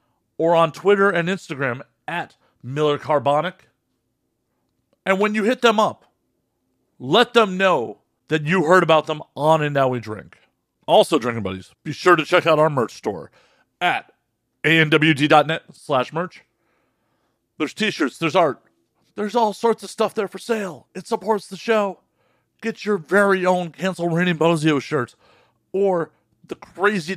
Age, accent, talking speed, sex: 40-59, American, 150 wpm, male